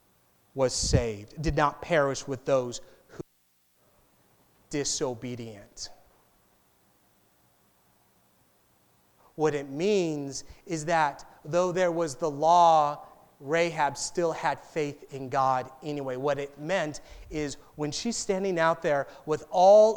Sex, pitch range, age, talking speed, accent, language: male, 135-175 Hz, 30-49, 115 wpm, American, English